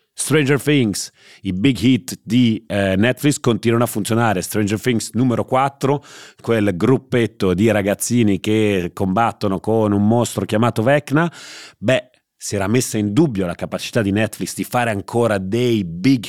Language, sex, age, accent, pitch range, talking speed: Italian, male, 30-49, native, 95-120 Hz, 145 wpm